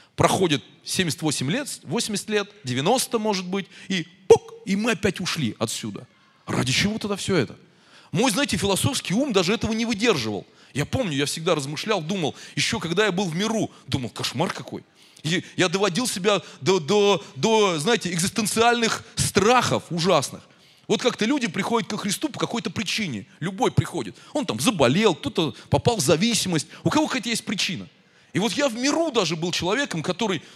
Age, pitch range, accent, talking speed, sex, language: 30-49, 165-230 Hz, native, 165 wpm, male, Russian